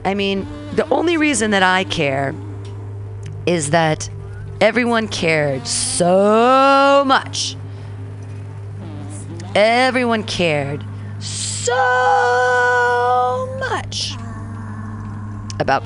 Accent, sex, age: American, female, 40-59